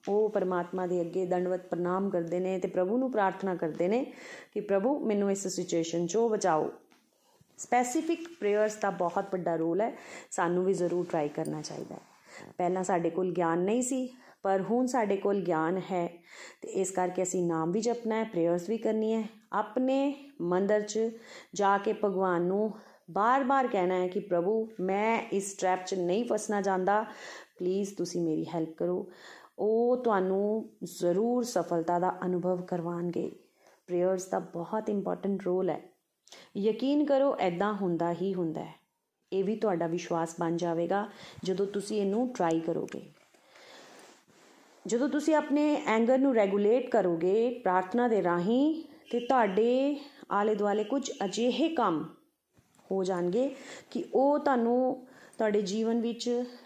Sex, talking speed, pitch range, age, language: female, 125 wpm, 180-230 Hz, 30-49, Punjabi